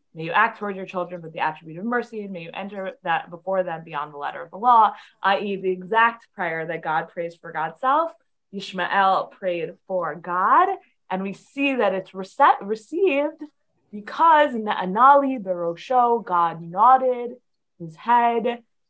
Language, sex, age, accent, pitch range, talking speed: English, female, 20-39, American, 180-240 Hz, 170 wpm